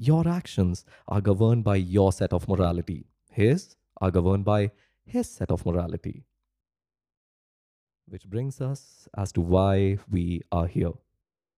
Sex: male